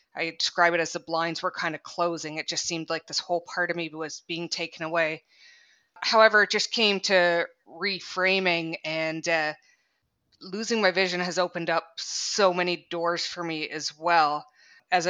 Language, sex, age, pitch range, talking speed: English, female, 20-39, 160-180 Hz, 180 wpm